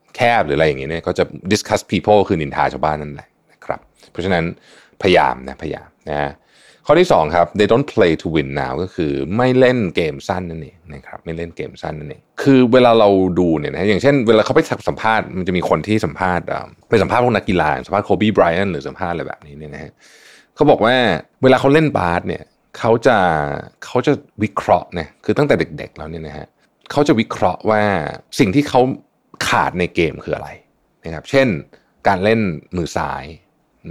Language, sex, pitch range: Thai, male, 85-125 Hz